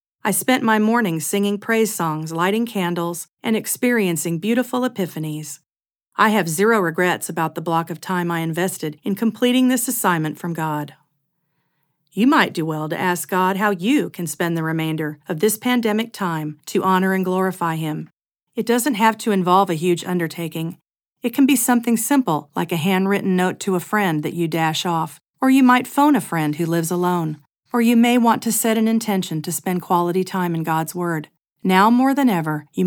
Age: 40-59